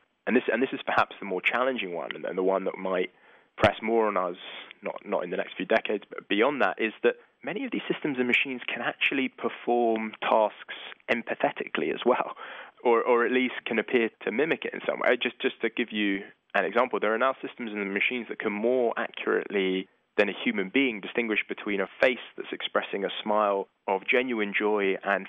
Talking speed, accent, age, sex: 210 wpm, British, 20-39, male